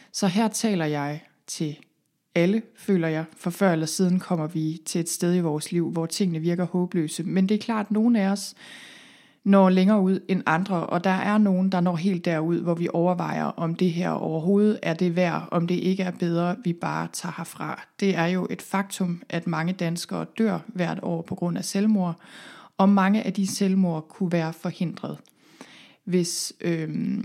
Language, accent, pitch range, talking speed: Danish, native, 170-200 Hz, 195 wpm